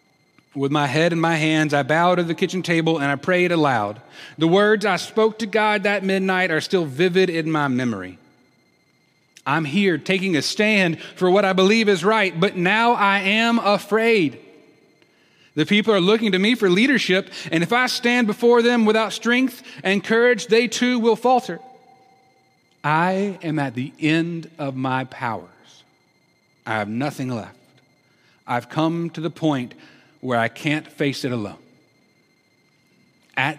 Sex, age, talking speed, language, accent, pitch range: male, 30-49, 165 wpm, English, American, 150-220 Hz